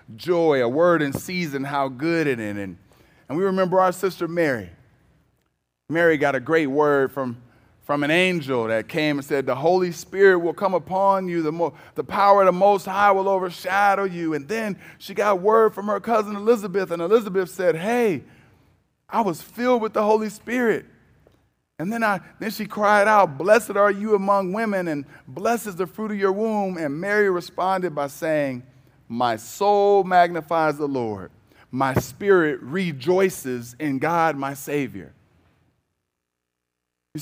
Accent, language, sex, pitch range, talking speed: American, English, male, 145-205 Hz, 170 wpm